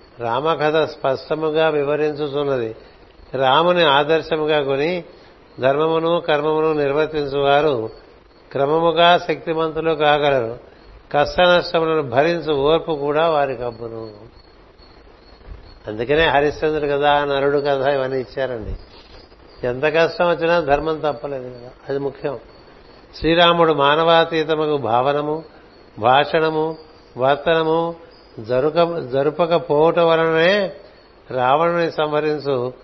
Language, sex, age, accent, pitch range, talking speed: Telugu, male, 60-79, native, 140-160 Hz, 80 wpm